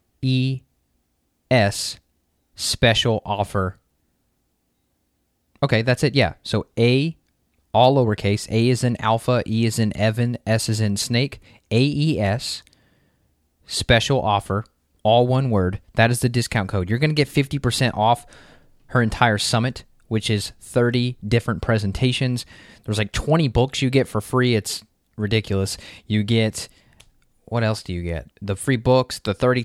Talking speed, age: 150 wpm, 20-39